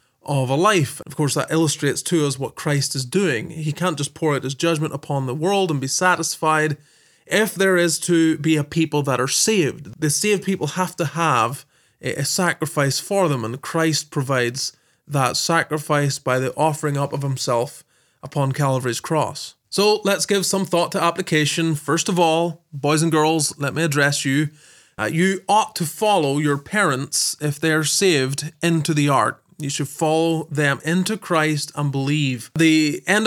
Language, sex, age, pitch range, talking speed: English, male, 20-39, 145-175 Hz, 180 wpm